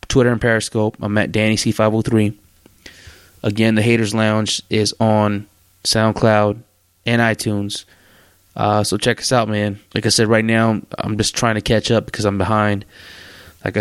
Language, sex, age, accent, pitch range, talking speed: English, male, 20-39, American, 100-110 Hz, 160 wpm